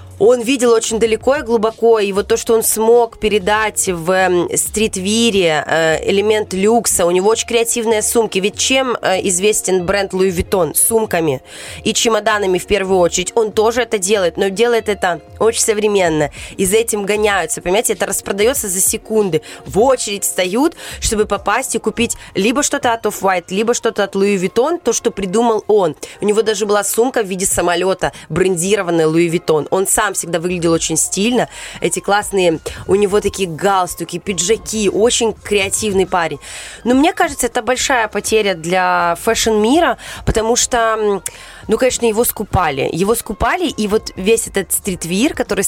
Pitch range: 185-225 Hz